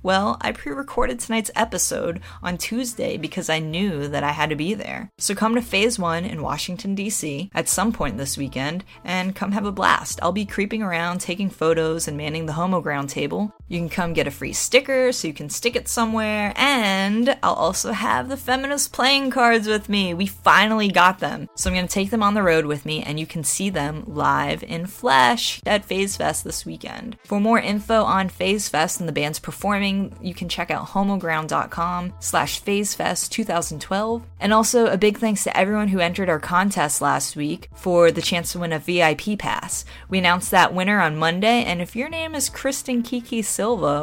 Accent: American